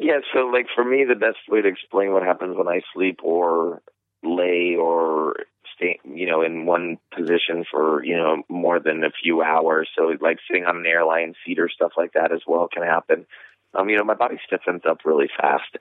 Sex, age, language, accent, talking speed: male, 30-49, English, American, 215 wpm